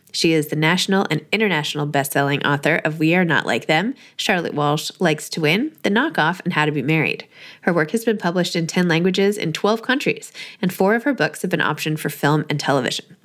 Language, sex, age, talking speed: English, female, 20-39, 220 wpm